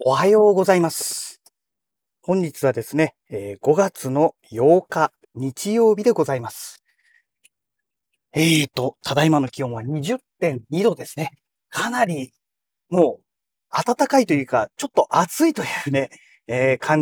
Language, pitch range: Japanese, 140-210 Hz